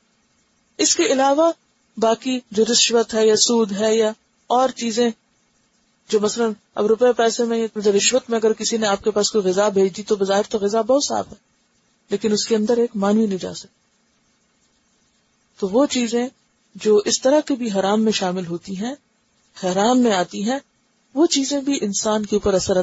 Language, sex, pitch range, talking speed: Urdu, female, 200-235 Hz, 180 wpm